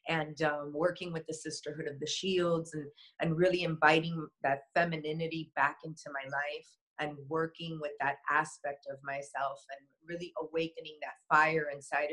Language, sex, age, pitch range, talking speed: English, female, 30-49, 150-170 Hz, 160 wpm